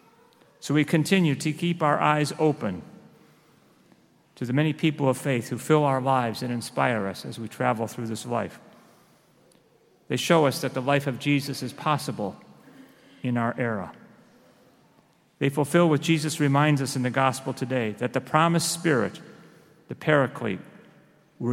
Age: 40-59